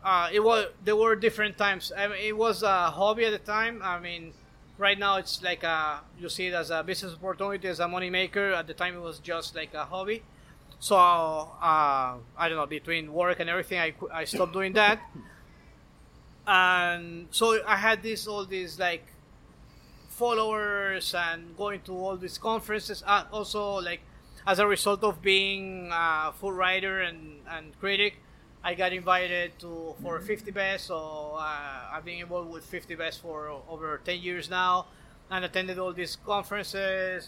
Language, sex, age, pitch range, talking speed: English, male, 30-49, 165-195 Hz, 180 wpm